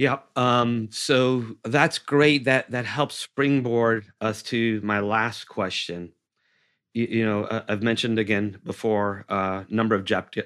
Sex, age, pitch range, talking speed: male, 40-59, 95-115 Hz, 155 wpm